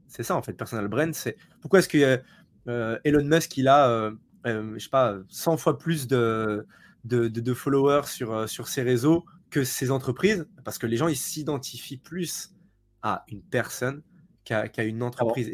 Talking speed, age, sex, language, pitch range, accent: 180 wpm, 20-39, male, French, 120-155 Hz, French